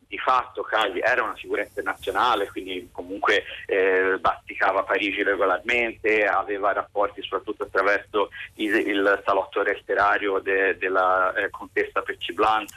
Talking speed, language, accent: 120 wpm, Italian, native